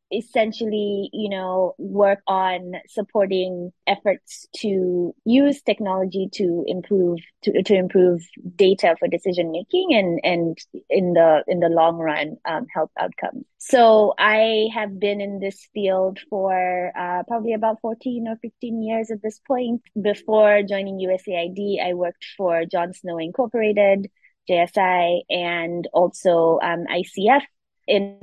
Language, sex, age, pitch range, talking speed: English, female, 20-39, 175-215 Hz, 135 wpm